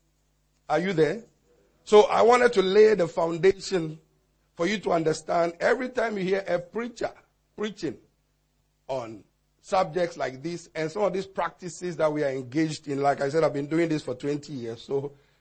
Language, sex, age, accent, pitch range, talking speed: English, male, 50-69, Nigerian, 155-200 Hz, 180 wpm